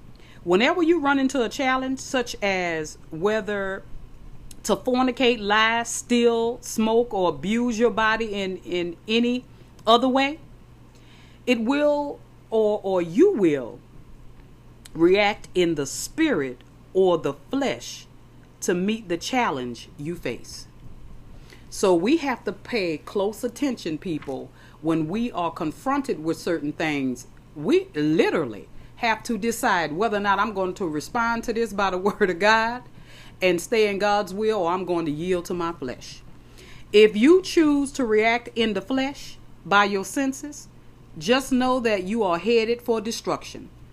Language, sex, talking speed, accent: English, female, 150 wpm, American